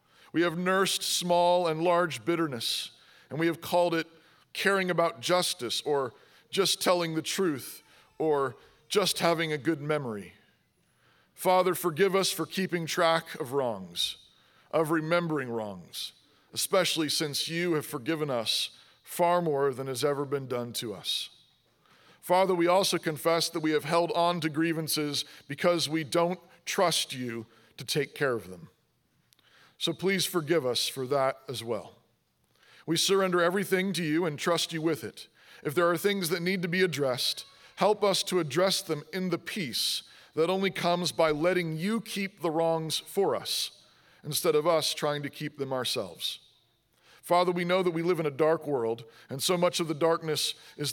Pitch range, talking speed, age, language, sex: 150-180 Hz, 170 wpm, 40-59, English, male